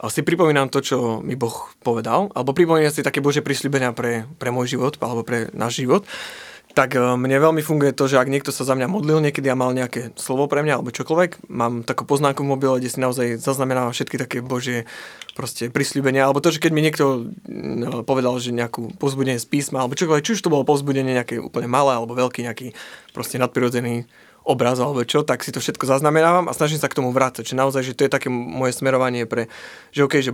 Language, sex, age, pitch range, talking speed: Slovak, male, 20-39, 125-145 Hz, 210 wpm